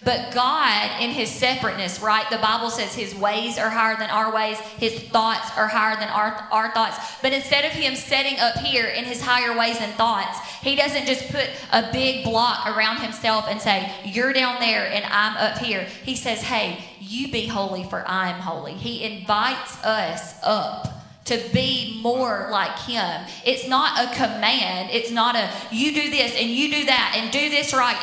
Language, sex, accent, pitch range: English, female, American, 220-260 Hz